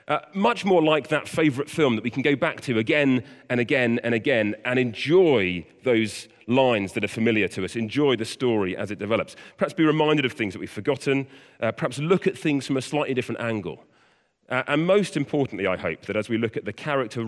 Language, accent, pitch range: English, British, 115-150 Hz